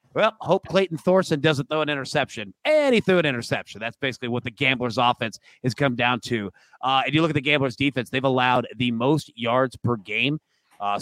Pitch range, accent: 115-145 Hz, American